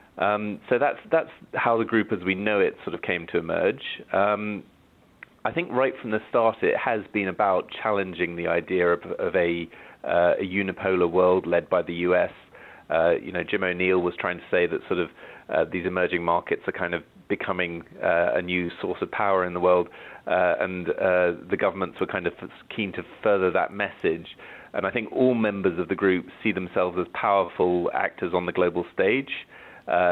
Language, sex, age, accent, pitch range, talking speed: English, male, 30-49, British, 90-100 Hz, 200 wpm